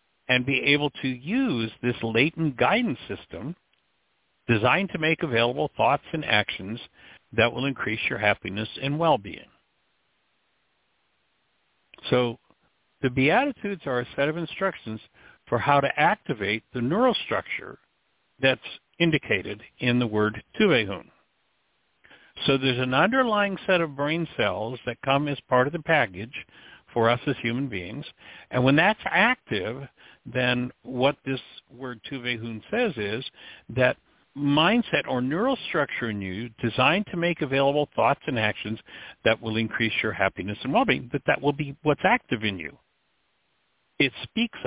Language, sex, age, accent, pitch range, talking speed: English, male, 60-79, American, 115-155 Hz, 140 wpm